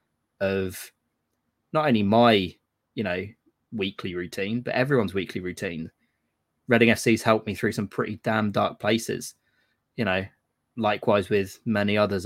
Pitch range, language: 95-115 Hz, English